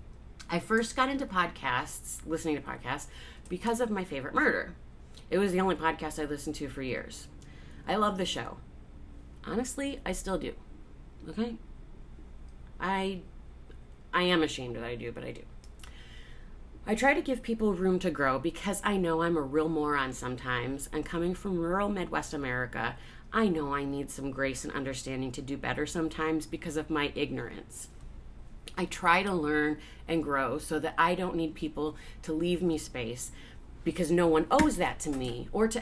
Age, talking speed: 30-49, 175 wpm